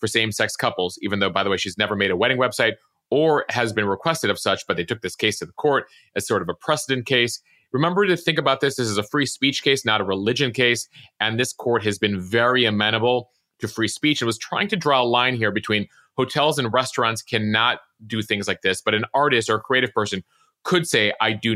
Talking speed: 240 wpm